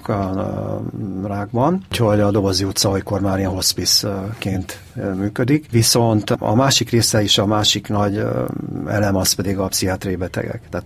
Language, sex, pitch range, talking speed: Hungarian, male, 95-110 Hz, 140 wpm